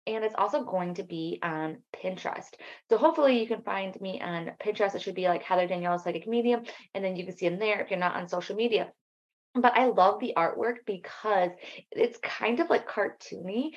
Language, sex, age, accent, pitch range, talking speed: English, female, 20-39, American, 175-215 Hz, 215 wpm